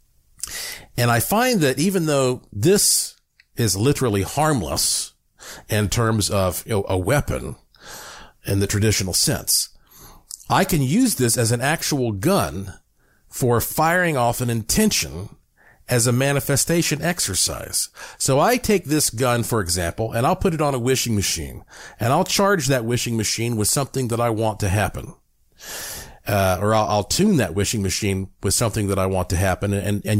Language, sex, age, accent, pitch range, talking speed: English, male, 50-69, American, 110-170 Hz, 160 wpm